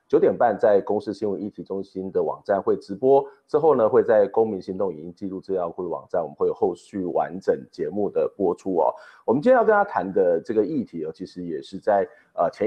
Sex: male